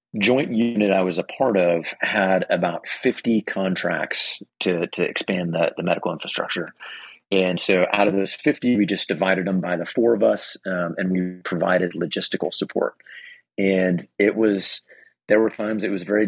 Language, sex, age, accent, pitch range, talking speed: English, male, 30-49, American, 90-105 Hz, 175 wpm